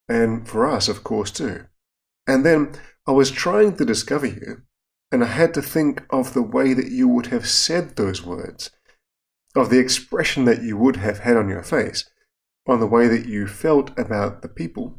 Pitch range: 105-135 Hz